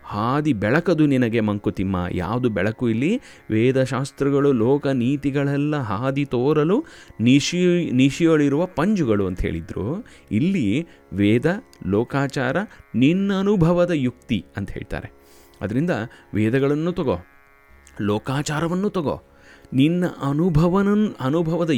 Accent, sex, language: native, male, Kannada